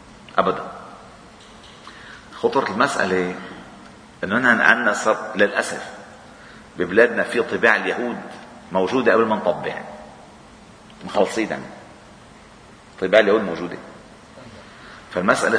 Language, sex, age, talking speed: Arabic, male, 40-59, 75 wpm